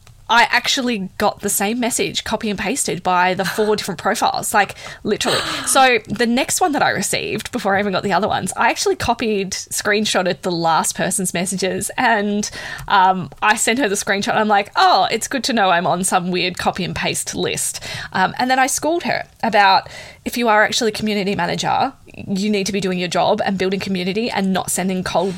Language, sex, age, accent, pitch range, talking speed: English, female, 20-39, Australian, 190-255 Hz, 210 wpm